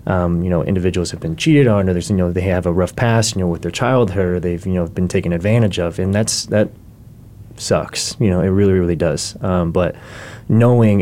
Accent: American